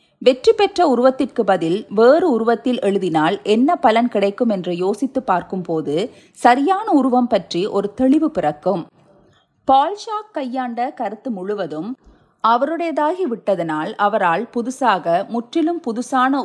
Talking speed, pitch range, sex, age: 105 wpm, 190-275 Hz, female, 30-49